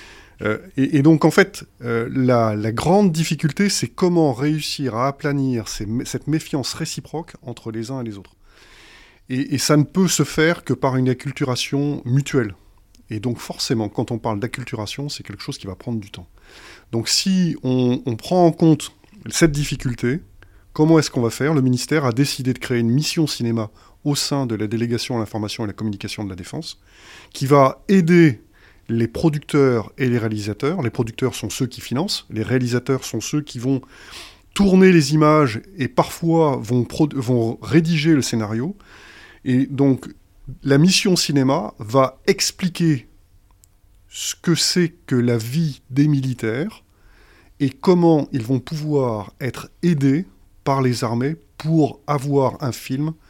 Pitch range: 115-155 Hz